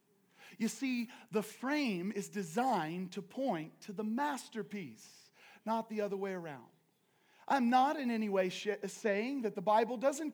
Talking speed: 150 wpm